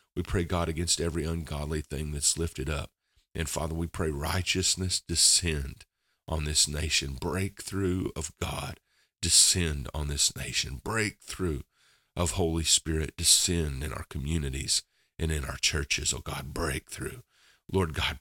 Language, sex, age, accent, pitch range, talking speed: English, male, 40-59, American, 75-90 Hz, 140 wpm